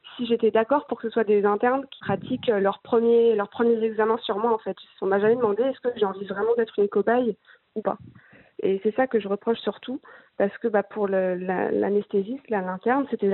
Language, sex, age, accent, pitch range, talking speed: French, female, 20-39, French, 200-235 Hz, 230 wpm